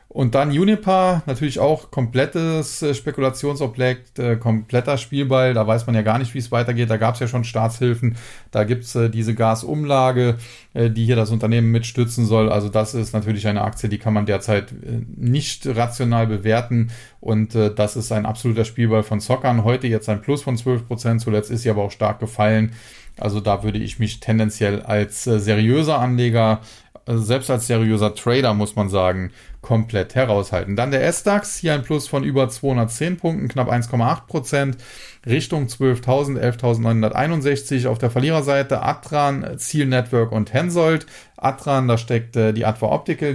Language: German